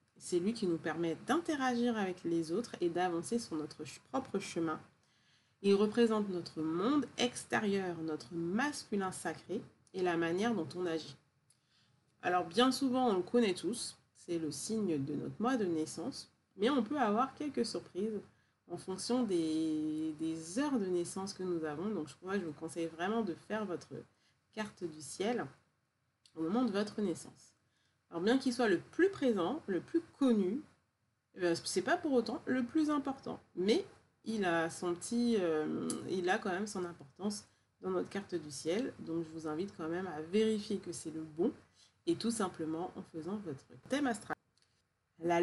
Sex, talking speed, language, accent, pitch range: female, 175 wpm, French, French, 160-215 Hz